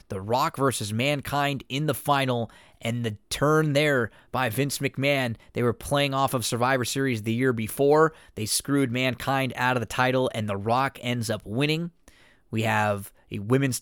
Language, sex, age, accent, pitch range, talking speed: English, male, 20-39, American, 115-140 Hz, 180 wpm